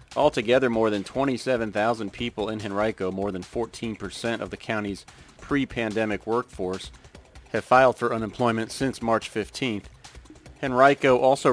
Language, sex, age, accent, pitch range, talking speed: English, male, 40-59, American, 105-120 Hz, 125 wpm